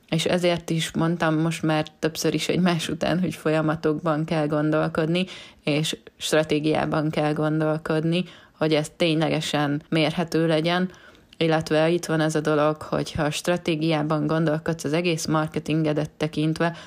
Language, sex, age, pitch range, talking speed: Hungarian, female, 20-39, 155-175 Hz, 130 wpm